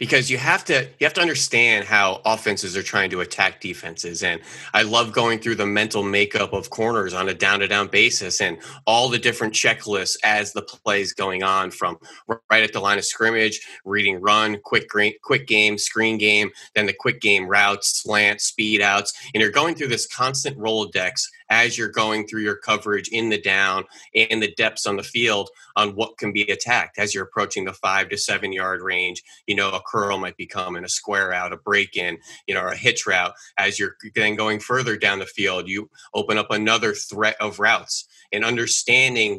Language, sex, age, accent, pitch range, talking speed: English, male, 20-39, American, 105-115 Hz, 215 wpm